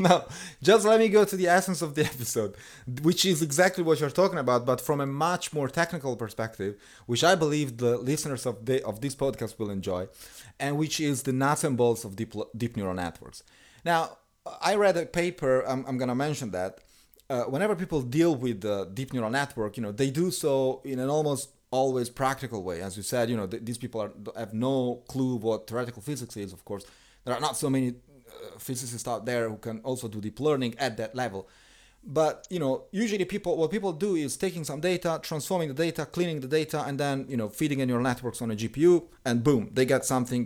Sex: male